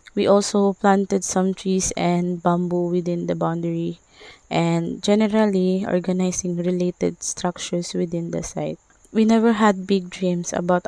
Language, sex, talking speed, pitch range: English, female, 130 wpm, 175-195 Hz